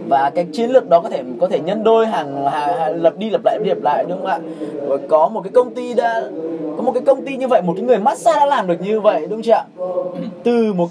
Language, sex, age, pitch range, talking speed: Vietnamese, male, 20-39, 175-250 Hz, 285 wpm